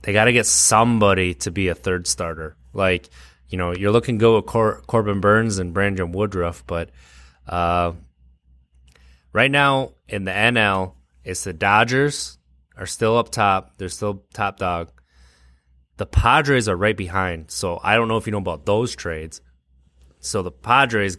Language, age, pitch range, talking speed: English, 20-39, 65-105 Hz, 165 wpm